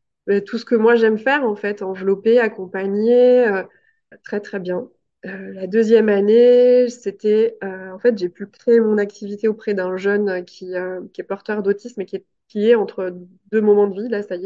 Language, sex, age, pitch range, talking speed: French, female, 20-39, 195-230 Hz, 205 wpm